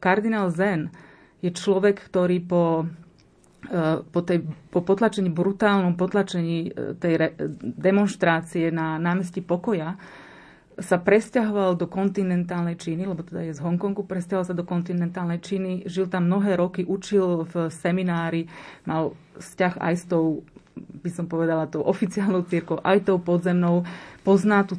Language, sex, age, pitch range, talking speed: Slovak, female, 30-49, 175-195 Hz, 135 wpm